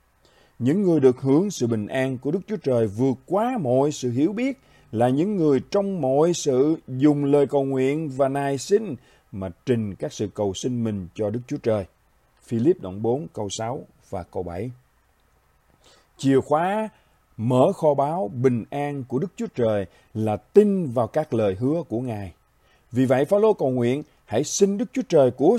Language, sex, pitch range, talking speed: Vietnamese, male, 110-150 Hz, 190 wpm